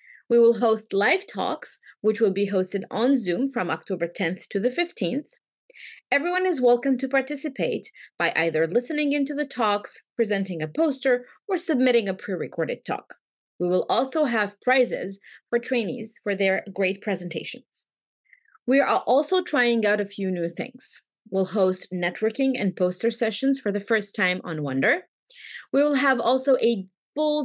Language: English